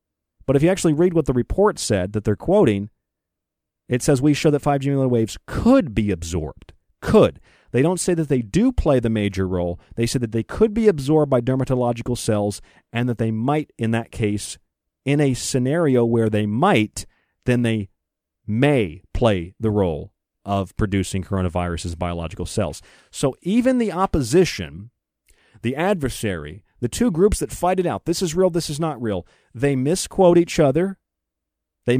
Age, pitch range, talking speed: 40-59, 105-165 Hz, 175 wpm